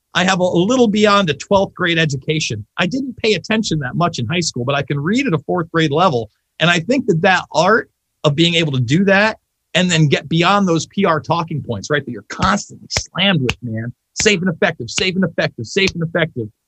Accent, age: American, 40-59